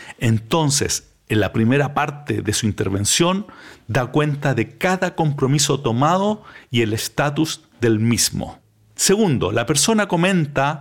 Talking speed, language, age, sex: 130 wpm, Spanish, 50-69, male